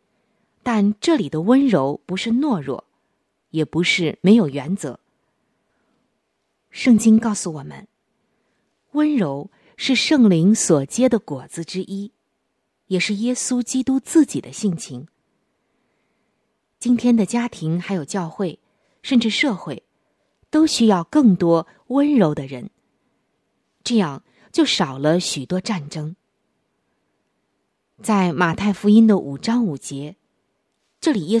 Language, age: Chinese, 20-39